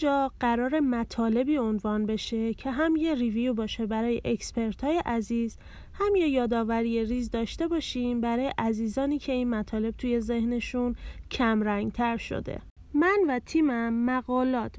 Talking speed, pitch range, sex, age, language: 140 wpm, 230-280 Hz, female, 30-49, Persian